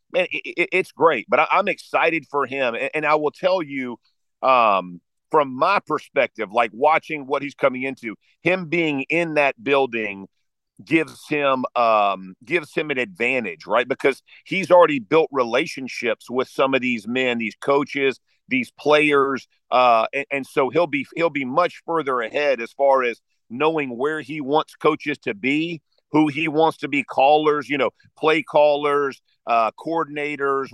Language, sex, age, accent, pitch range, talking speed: English, male, 50-69, American, 130-155 Hz, 160 wpm